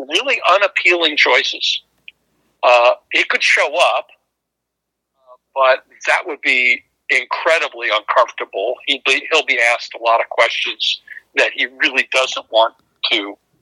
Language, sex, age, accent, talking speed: English, male, 60-79, American, 130 wpm